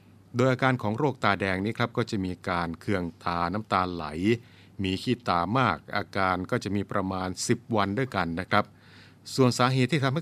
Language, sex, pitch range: Thai, male, 90-115 Hz